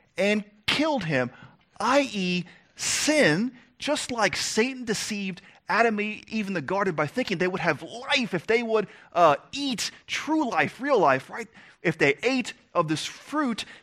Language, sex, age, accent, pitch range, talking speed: English, male, 30-49, American, 140-220 Hz, 150 wpm